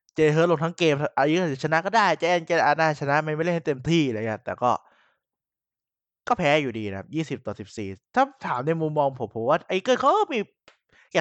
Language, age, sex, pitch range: Thai, 20-39, male, 130-165 Hz